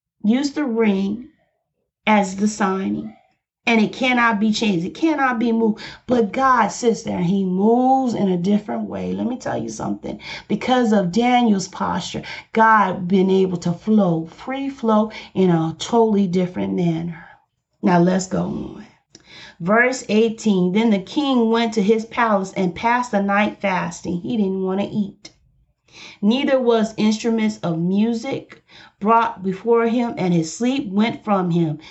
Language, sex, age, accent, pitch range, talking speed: English, female, 40-59, American, 195-255 Hz, 155 wpm